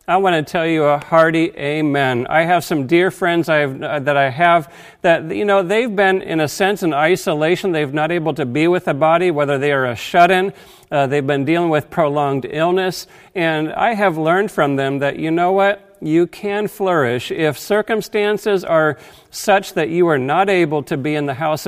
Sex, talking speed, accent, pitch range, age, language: male, 200 wpm, American, 150-190 Hz, 50-69, English